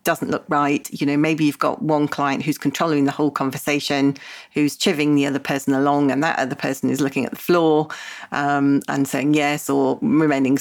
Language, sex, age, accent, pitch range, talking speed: English, female, 40-59, British, 145-180 Hz, 205 wpm